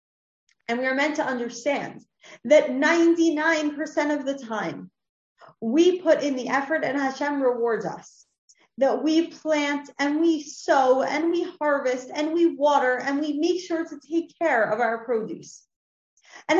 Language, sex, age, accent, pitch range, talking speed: English, female, 30-49, American, 235-300 Hz, 155 wpm